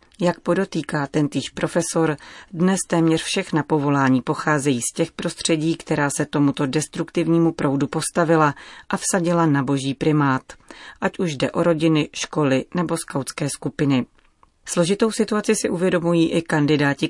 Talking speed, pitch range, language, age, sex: 135 wpm, 140-165 Hz, Czech, 30-49, female